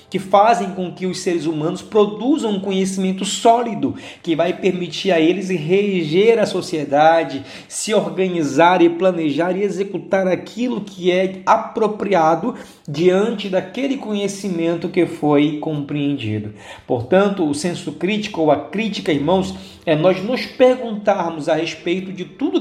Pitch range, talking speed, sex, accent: 170-220 Hz, 135 wpm, male, Brazilian